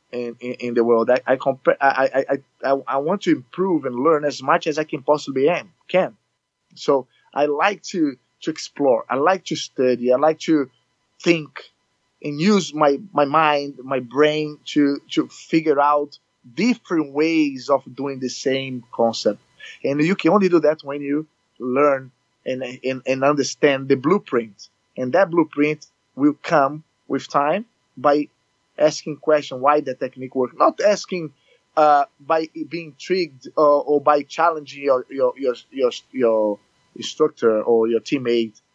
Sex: male